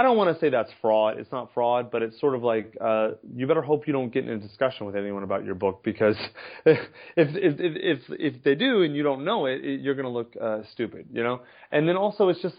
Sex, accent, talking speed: male, American, 260 wpm